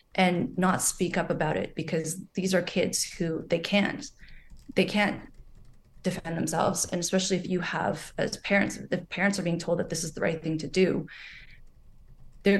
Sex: female